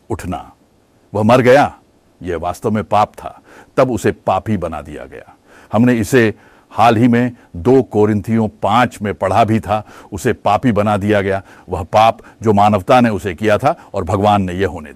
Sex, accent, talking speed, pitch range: male, Indian, 180 wpm, 100-120 Hz